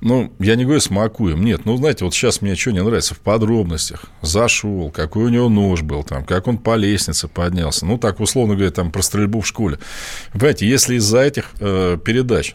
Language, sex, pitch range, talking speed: Russian, male, 95-115 Hz, 195 wpm